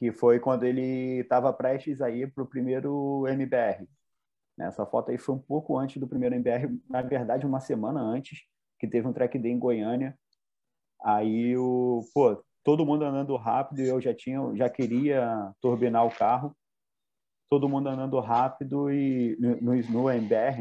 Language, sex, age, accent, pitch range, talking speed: Portuguese, male, 30-49, Brazilian, 115-140 Hz, 170 wpm